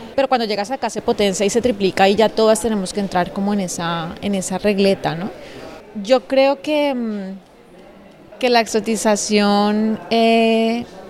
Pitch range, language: 215-250 Hz, Spanish